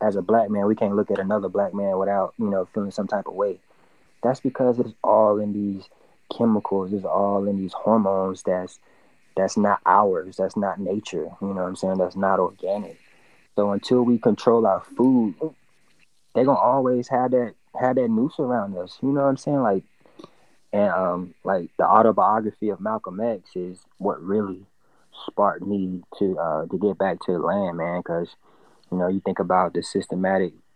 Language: English